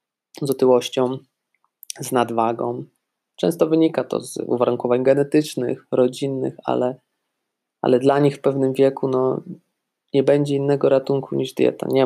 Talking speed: 125 wpm